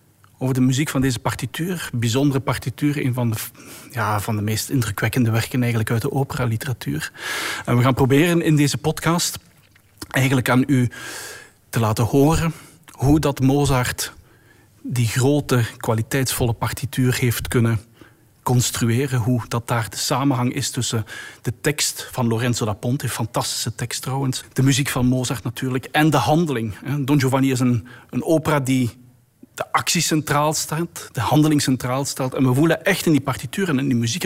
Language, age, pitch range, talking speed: Dutch, 40-59, 120-150 Hz, 165 wpm